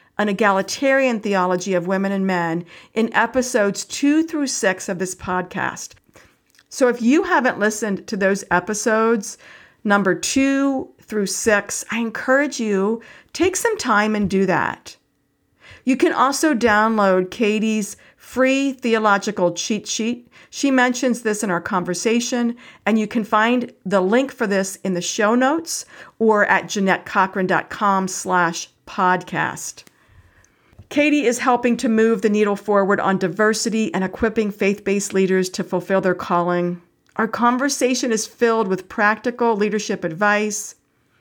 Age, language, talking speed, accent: 50-69, English, 135 wpm, American